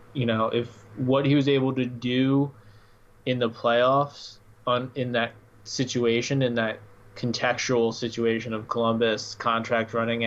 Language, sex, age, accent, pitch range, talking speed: English, male, 20-39, American, 110-125 Hz, 140 wpm